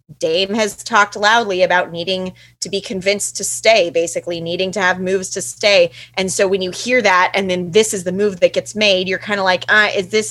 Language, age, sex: English, 20-39, female